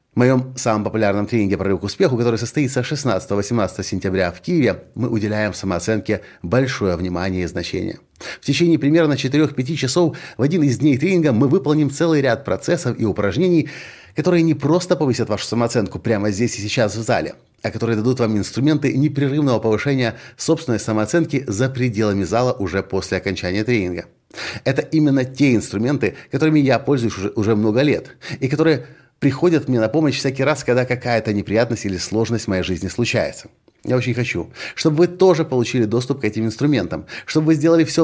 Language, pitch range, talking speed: Russian, 100-145 Hz, 170 wpm